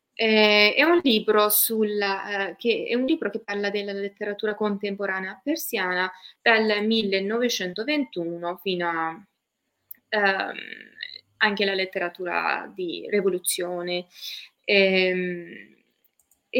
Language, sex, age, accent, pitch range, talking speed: Italian, female, 20-39, native, 190-275 Hz, 100 wpm